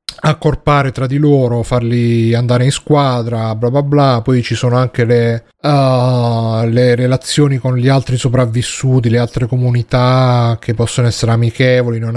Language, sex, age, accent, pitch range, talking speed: Italian, male, 30-49, native, 120-145 Hz, 155 wpm